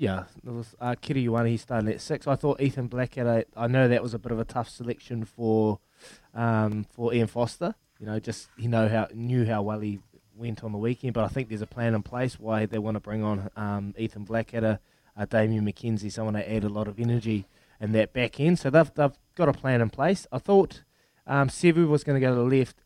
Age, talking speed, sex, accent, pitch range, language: 20-39, 240 wpm, male, Australian, 110-130 Hz, English